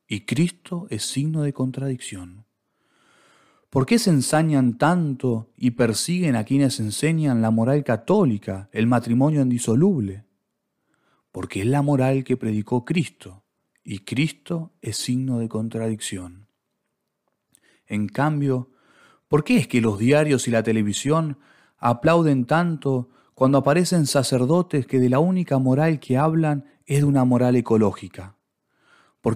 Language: Spanish